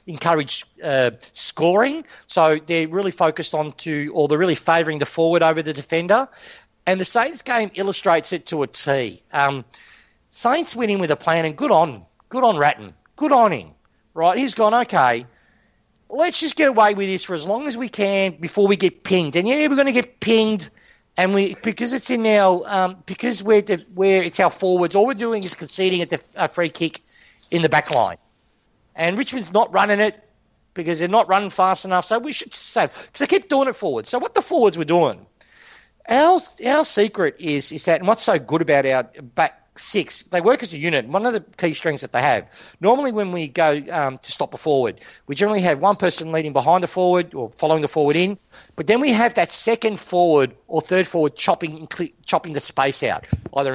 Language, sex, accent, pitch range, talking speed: English, male, Australian, 160-220 Hz, 215 wpm